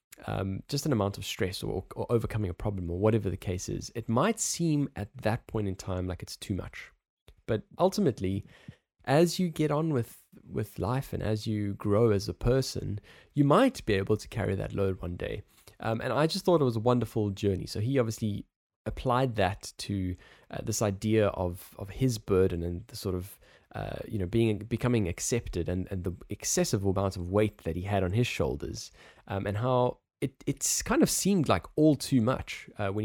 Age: 20-39